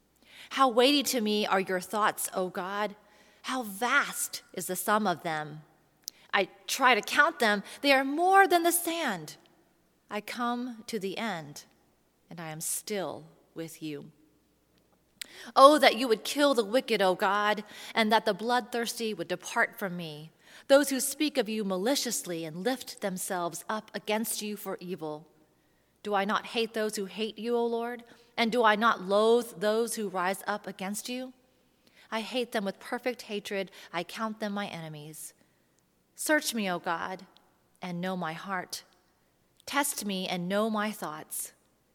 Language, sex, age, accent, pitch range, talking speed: English, female, 30-49, American, 175-235 Hz, 165 wpm